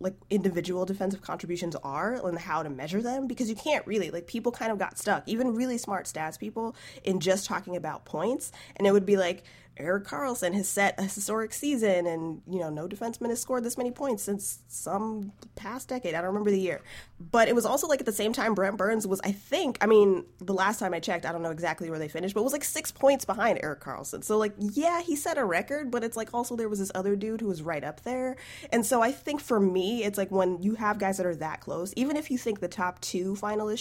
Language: English